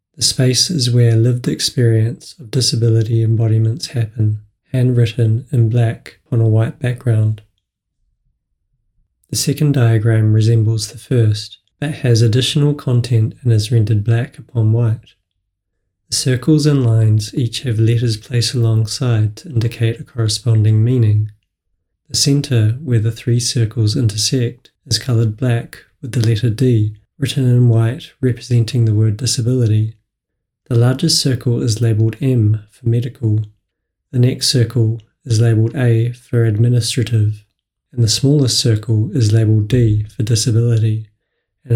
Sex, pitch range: male, 110-125 Hz